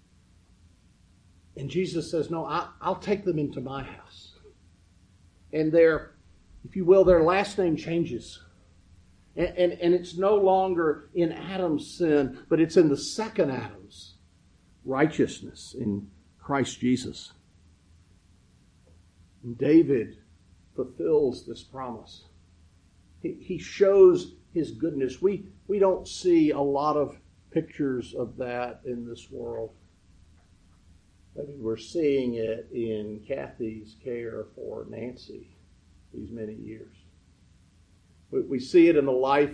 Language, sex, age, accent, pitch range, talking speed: English, male, 50-69, American, 90-150 Hz, 120 wpm